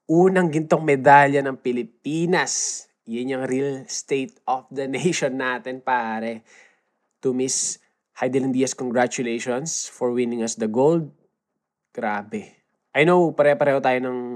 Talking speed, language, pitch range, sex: 125 wpm, Filipino, 115-145 Hz, male